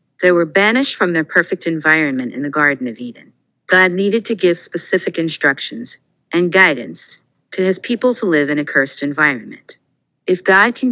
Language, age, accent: English, 50-69, American